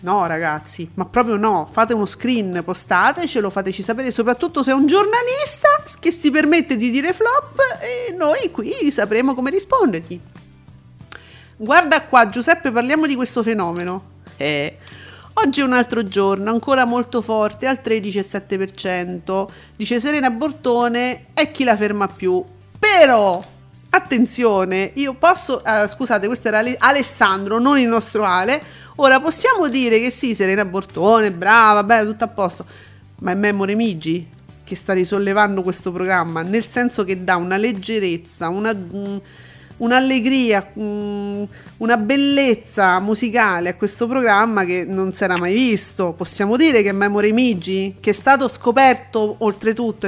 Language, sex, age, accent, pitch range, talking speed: Italian, female, 40-59, native, 195-250 Hz, 140 wpm